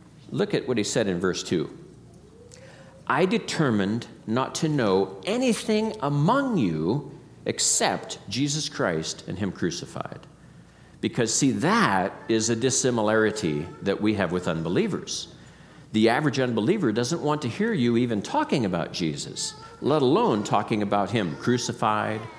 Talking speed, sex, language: 135 wpm, male, English